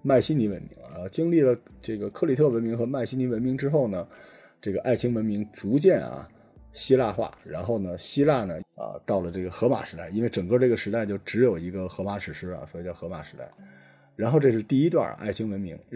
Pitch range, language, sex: 95-120 Hz, Chinese, male